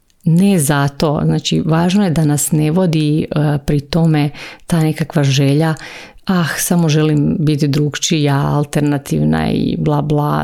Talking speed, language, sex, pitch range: 140 wpm, Croatian, female, 145-160 Hz